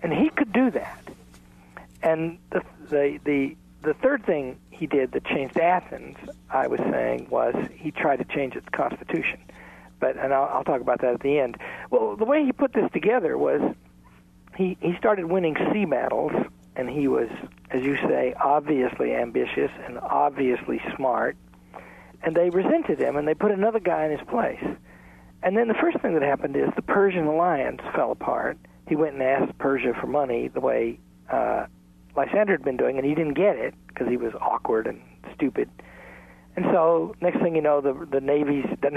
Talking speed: 190 wpm